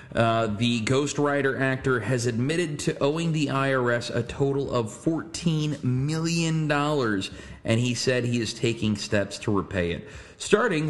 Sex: male